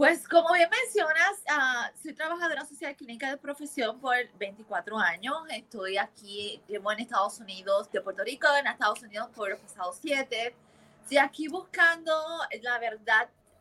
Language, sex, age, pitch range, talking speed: English, female, 20-39, 215-295 Hz, 150 wpm